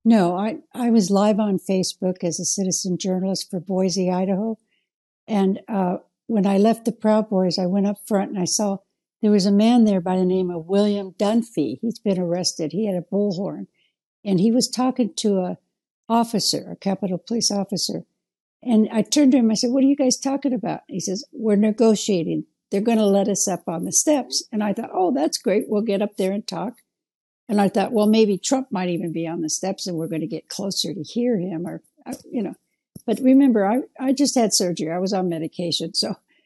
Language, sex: English, female